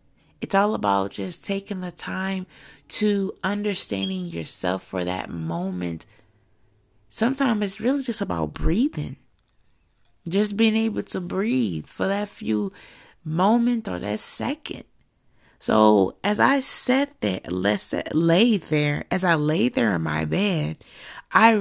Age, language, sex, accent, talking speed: 30-49, English, female, American, 125 wpm